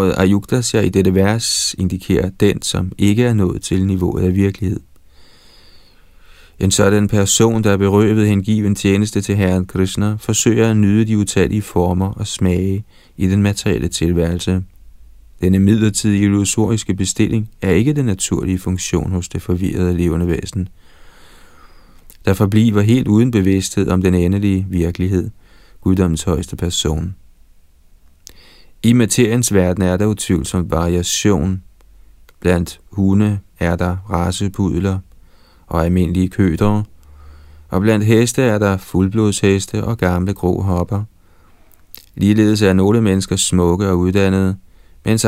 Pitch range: 85-105 Hz